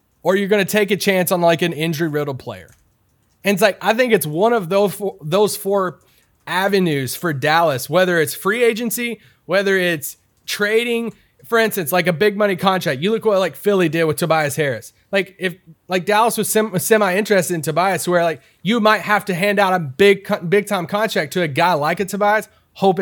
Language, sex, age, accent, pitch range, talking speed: English, male, 30-49, American, 160-200 Hz, 210 wpm